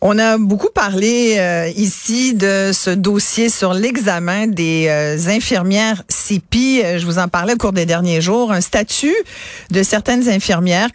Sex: female